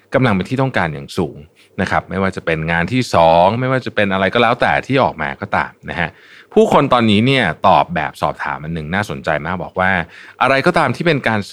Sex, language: male, Thai